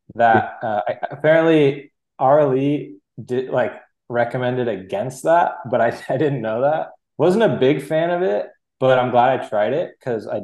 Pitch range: 115-140 Hz